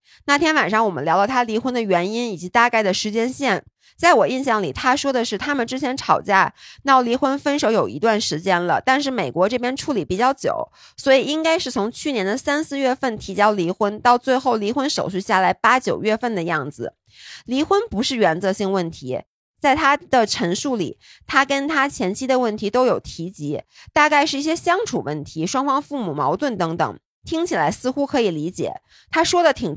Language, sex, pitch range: Chinese, female, 200-270 Hz